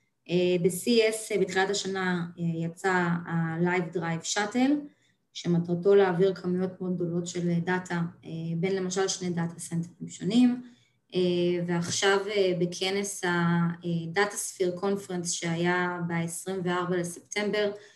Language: Hebrew